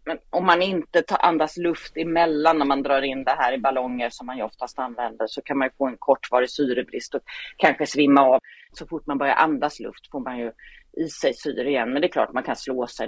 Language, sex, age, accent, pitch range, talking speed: Swedish, female, 30-49, native, 140-185 Hz, 250 wpm